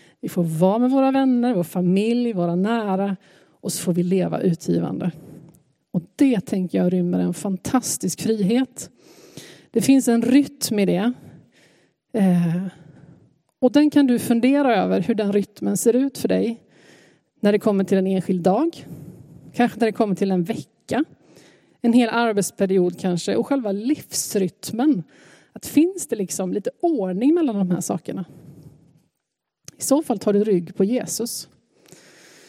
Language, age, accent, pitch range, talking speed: Swedish, 30-49, native, 185-240 Hz, 150 wpm